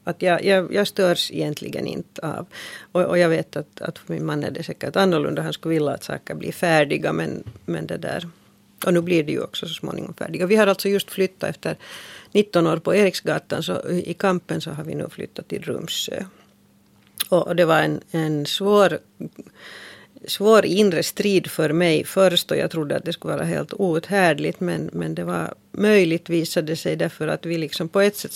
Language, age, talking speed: Finnish, 40-59, 205 wpm